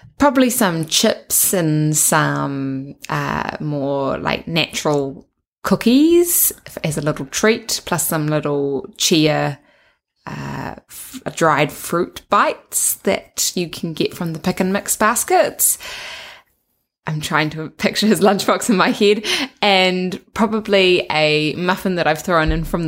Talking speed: 130 wpm